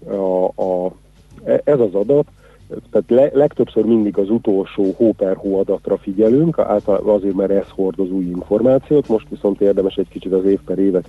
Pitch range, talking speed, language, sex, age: 95-100 Hz, 160 wpm, Hungarian, male, 50-69